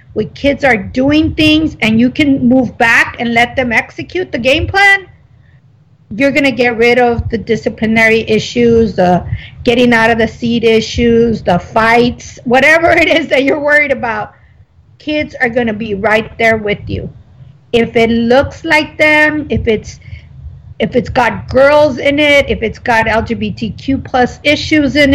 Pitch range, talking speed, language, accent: 225-275 Hz, 165 wpm, English, American